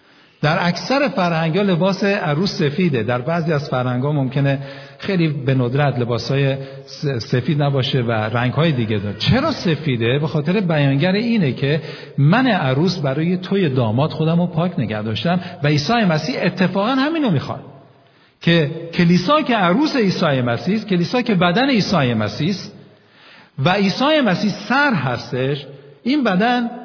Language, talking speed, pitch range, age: Persian, 145 wpm, 135-195 Hz, 50-69